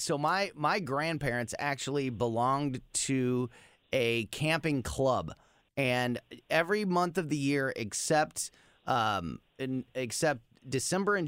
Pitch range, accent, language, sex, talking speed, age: 110-145 Hz, American, English, male, 115 wpm, 30-49